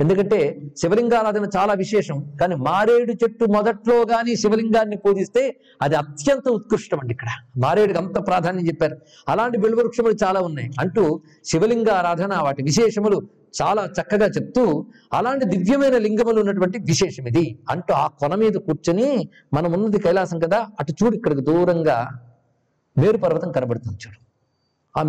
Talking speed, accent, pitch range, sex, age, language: 130 wpm, native, 160-225 Hz, male, 50-69, Telugu